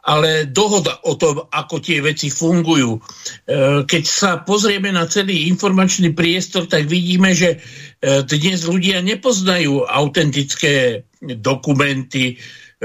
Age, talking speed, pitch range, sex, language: 60-79, 105 wpm, 140-175 Hz, male, Slovak